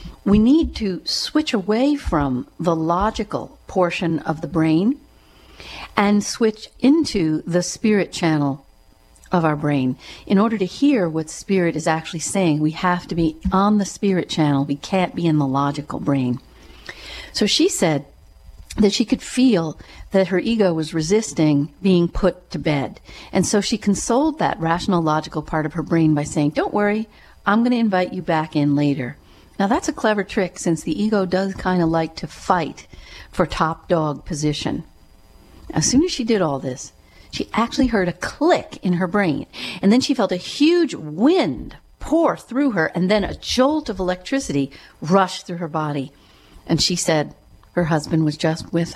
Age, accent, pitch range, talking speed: 50-69, American, 155-215 Hz, 180 wpm